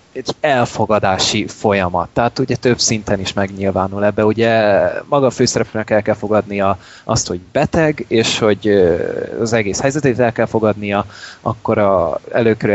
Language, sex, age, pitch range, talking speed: Hungarian, male, 20-39, 105-115 Hz, 140 wpm